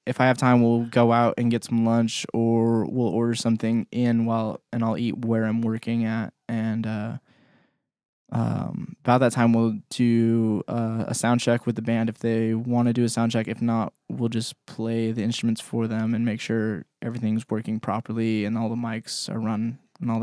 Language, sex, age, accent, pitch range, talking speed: English, male, 10-29, American, 115-120 Hz, 210 wpm